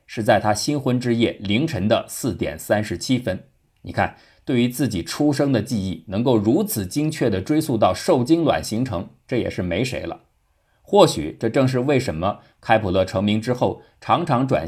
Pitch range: 100-145 Hz